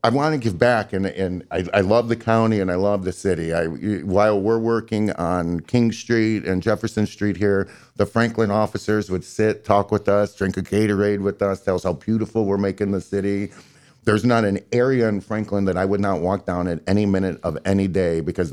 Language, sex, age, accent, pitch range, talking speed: English, male, 50-69, American, 95-115 Hz, 220 wpm